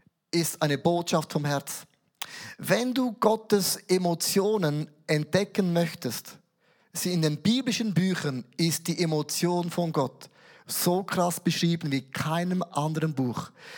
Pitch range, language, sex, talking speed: 160-200 Hz, German, male, 125 wpm